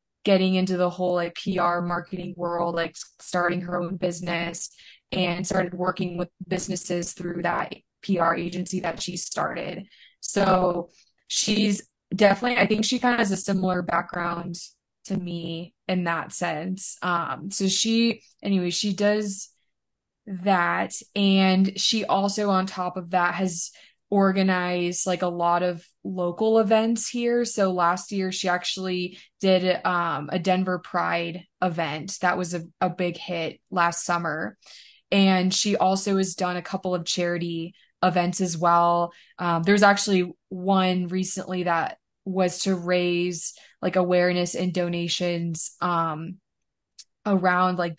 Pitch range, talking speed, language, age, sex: 175-190 Hz, 140 wpm, English, 20-39, female